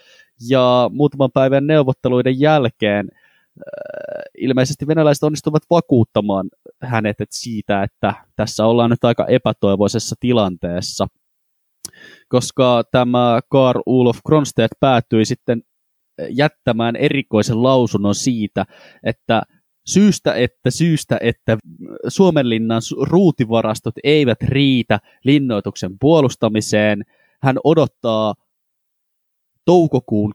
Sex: male